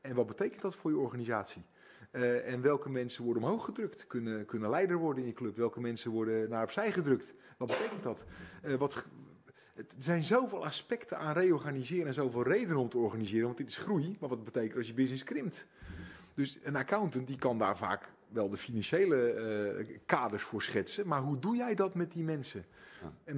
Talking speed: 195 wpm